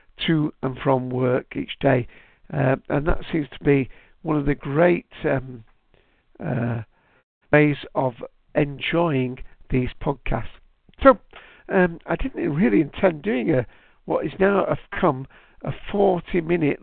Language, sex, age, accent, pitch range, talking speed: English, male, 60-79, British, 135-175 Hz, 135 wpm